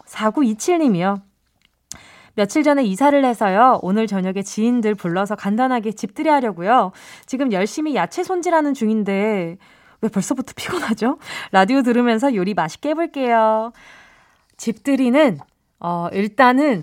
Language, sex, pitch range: Korean, female, 195-280 Hz